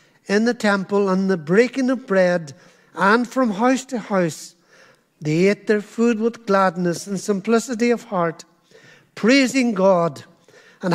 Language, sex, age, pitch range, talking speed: English, male, 60-79, 200-245 Hz, 145 wpm